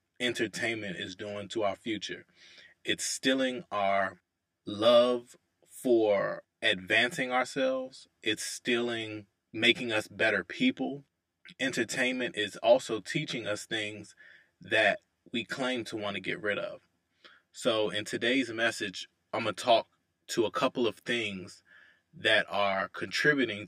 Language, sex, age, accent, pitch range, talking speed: English, male, 20-39, American, 85-125 Hz, 125 wpm